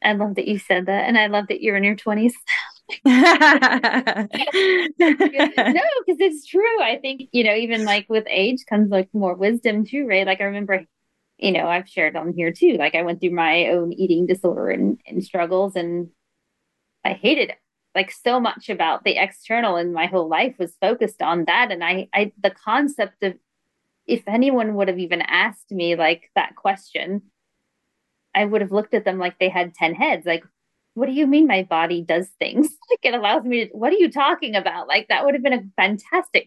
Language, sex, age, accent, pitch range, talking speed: English, female, 20-39, American, 190-245 Hz, 200 wpm